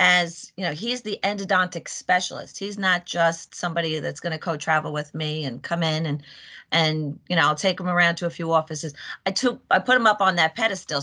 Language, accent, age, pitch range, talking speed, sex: English, American, 40-59, 150-185 Hz, 225 wpm, female